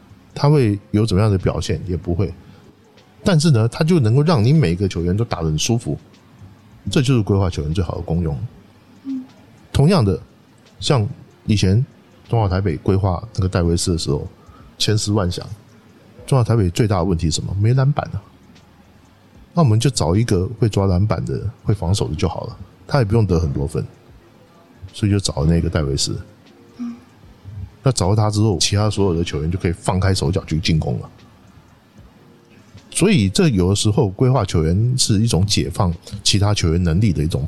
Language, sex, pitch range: Chinese, male, 90-115 Hz